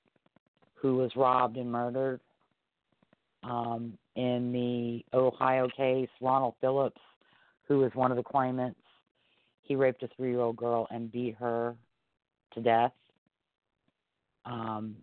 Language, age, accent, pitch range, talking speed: English, 40-59, American, 115-130 Hz, 115 wpm